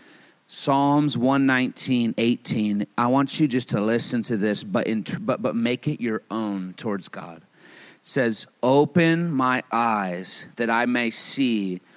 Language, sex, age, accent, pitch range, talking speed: English, male, 30-49, American, 105-130 Hz, 155 wpm